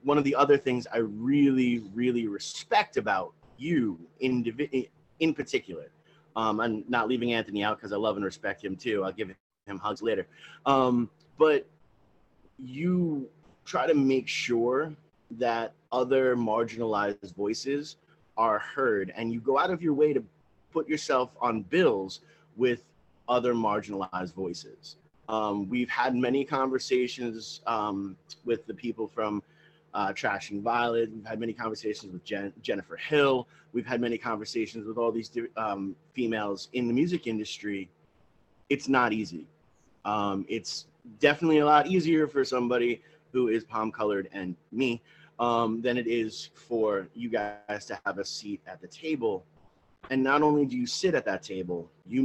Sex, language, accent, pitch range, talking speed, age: male, English, American, 110-135 Hz, 155 wpm, 30-49